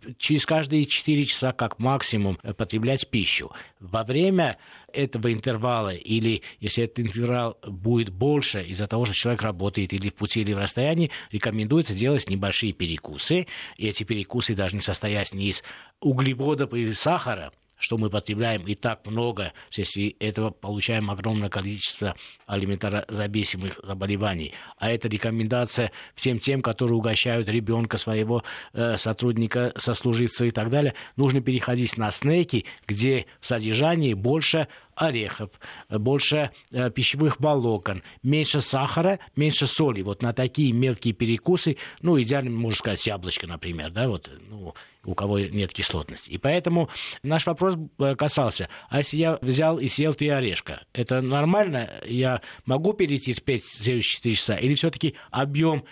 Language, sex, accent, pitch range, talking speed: Russian, male, native, 105-140 Hz, 140 wpm